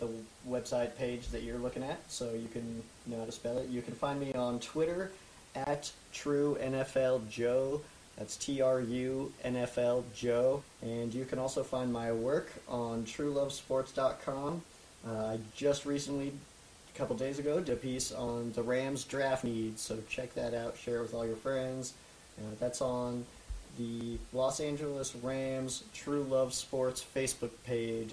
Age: 20-39